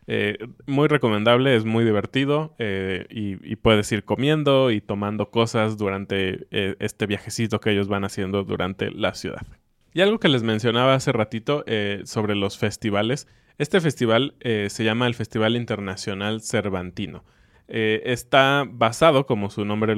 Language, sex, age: Spanish, male, 20-39